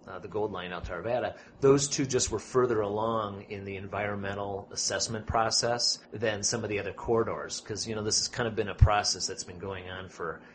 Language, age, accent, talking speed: English, 30-49, American, 215 wpm